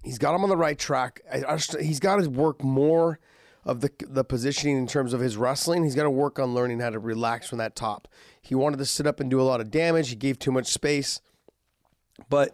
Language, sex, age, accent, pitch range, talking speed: English, male, 30-49, American, 130-155 Hz, 240 wpm